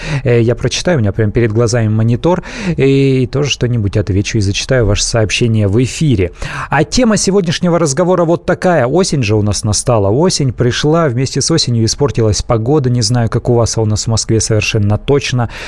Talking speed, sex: 185 wpm, male